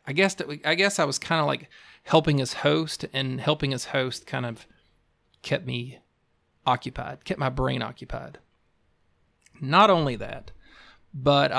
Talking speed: 150 wpm